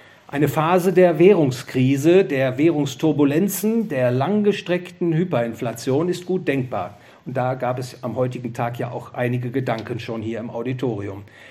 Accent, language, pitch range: German, English, 130-180 Hz